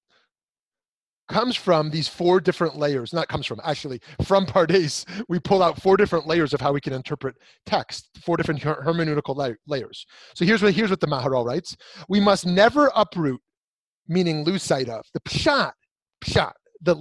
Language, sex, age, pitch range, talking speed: English, male, 30-49, 145-200 Hz, 175 wpm